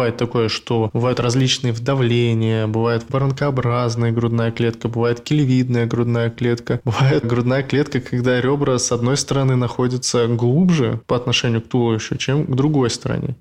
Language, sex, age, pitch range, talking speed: Russian, male, 20-39, 115-135 Hz, 145 wpm